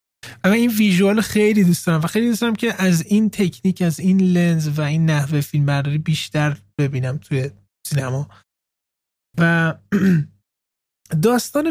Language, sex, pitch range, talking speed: Persian, male, 140-185 Hz, 145 wpm